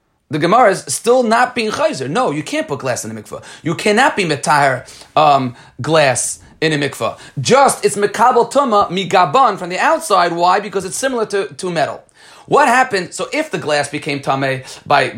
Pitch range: 145-200 Hz